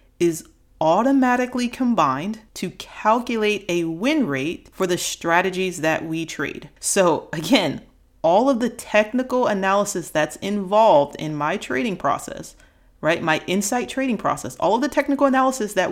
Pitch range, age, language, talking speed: 160-225 Hz, 30-49, English, 145 wpm